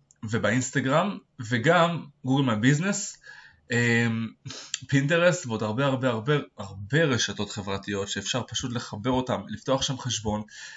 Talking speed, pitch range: 105 wpm, 110-135 Hz